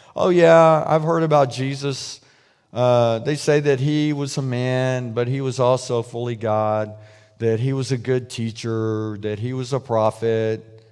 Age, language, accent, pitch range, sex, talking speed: 50-69, English, American, 125-175 Hz, male, 170 wpm